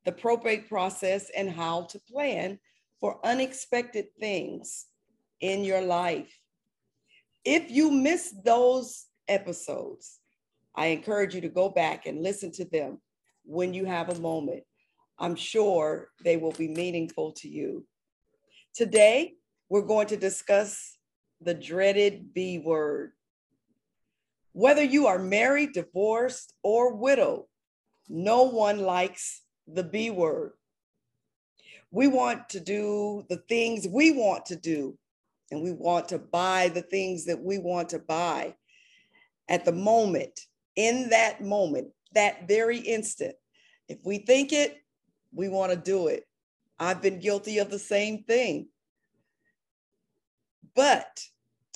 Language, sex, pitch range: English, female, 180-235 Hz